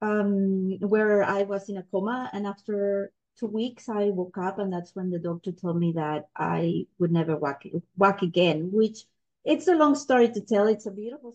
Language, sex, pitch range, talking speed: English, female, 185-215 Hz, 195 wpm